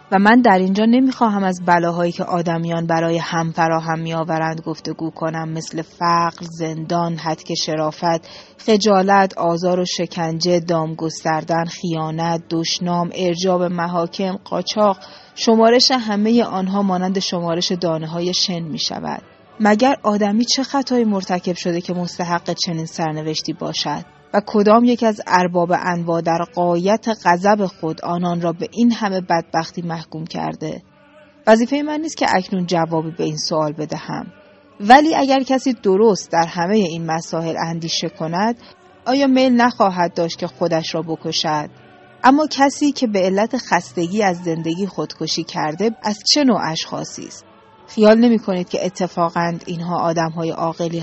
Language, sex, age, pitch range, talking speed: Persian, female, 30-49, 165-210 Hz, 140 wpm